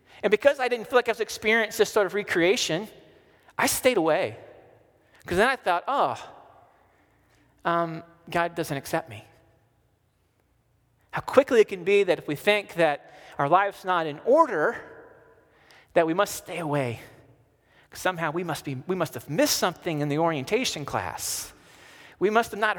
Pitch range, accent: 130-190 Hz, American